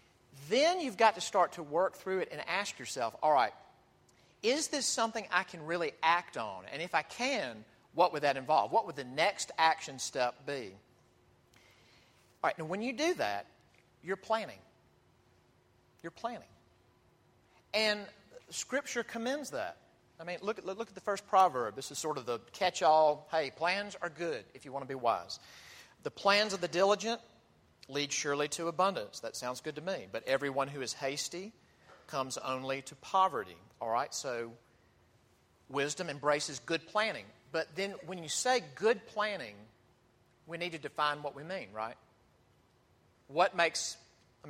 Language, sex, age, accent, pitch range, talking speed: English, male, 40-59, American, 125-190 Hz, 165 wpm